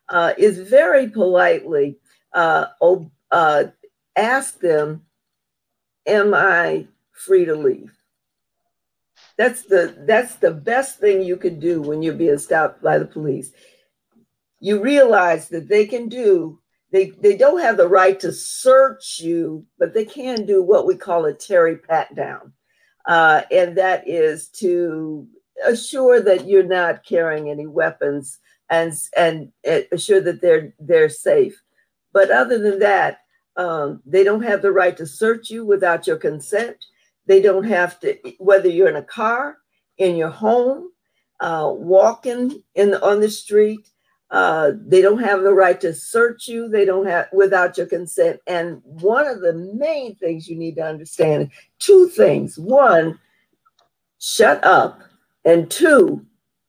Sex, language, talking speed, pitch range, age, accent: female, English, 150 wpm, 170-260 Hz, 50-69, American